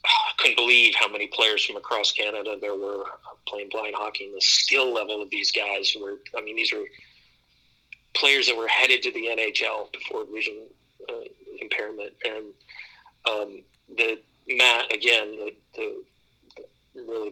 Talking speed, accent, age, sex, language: 150 wpm, American, 40-59, male, English